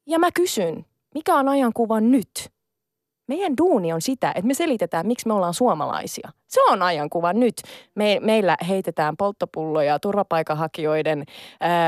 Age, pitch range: 20-39, 180-270 Hz